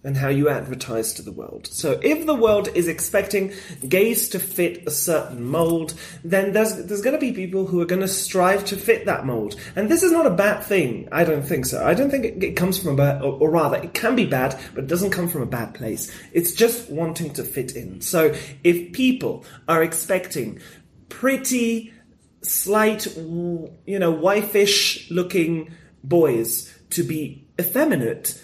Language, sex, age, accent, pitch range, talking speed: English, male, 30-49, British, 150-210 Hz, 190 wpm